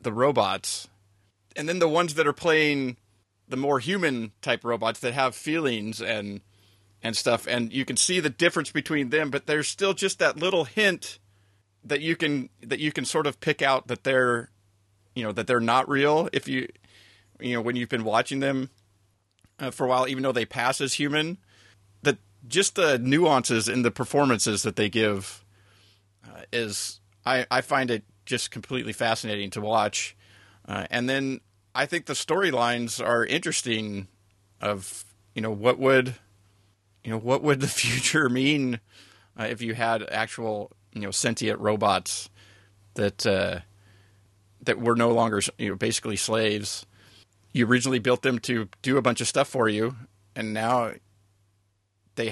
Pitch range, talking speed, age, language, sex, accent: 100-130 Hz, 170 wpm, 30-49, English, male, American